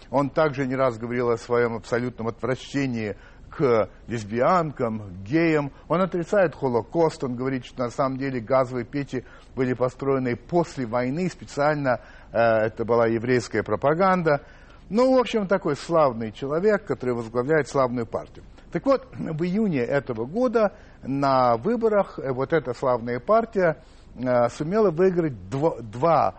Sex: male